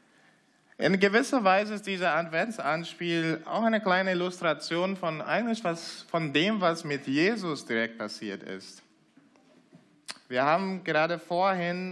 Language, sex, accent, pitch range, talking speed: German, male, German, 140-200 Hz, 125 wpm